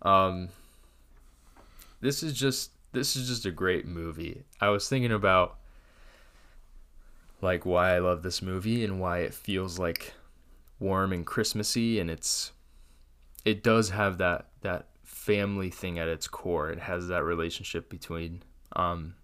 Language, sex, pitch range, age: English, male, 80-95 Hz, 20-39